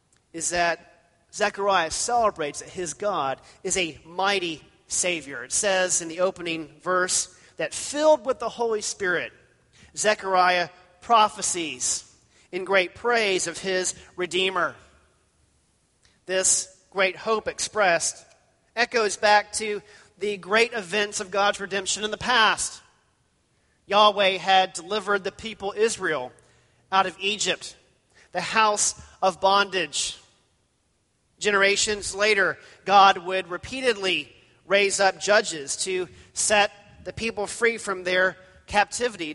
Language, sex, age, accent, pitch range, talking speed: English, male, 40-59, American, 180-215 Hz, 115 wpm